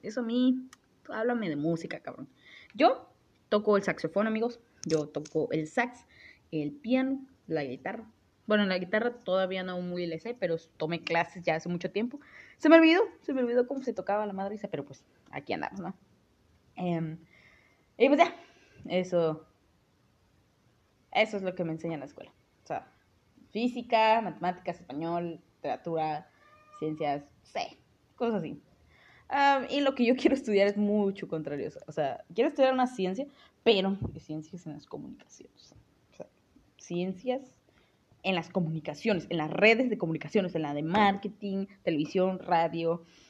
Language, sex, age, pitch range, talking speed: Spanish, female, 20-39, 160-230 Hz, 160 wpm